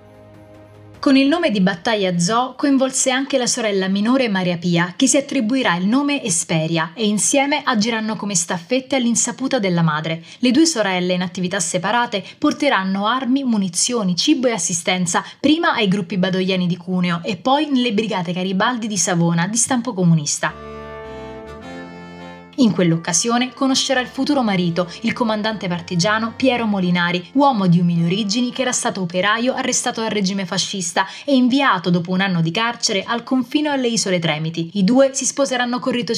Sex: female